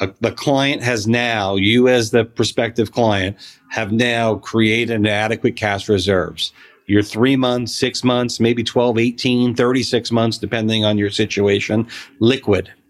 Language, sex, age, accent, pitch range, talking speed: English, male, 40-59, American, 105-125 Hz, 145 wpm